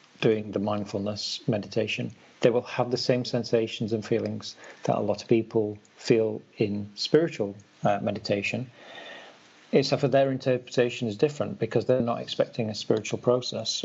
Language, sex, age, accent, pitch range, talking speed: English, male, 40-59, British, 105-125 Hz, 150 wpm